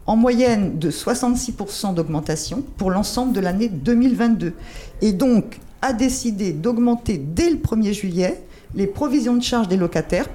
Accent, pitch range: French, 190-245 Hz